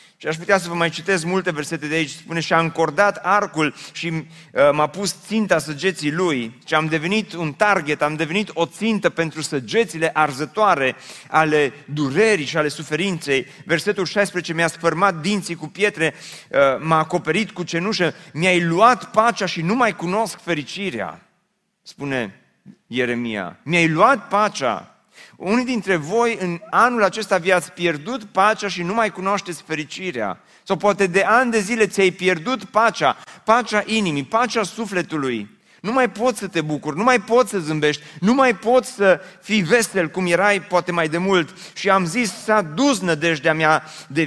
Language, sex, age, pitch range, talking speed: Romanian, male, 30-49, 160-210 Hz, 160 wpm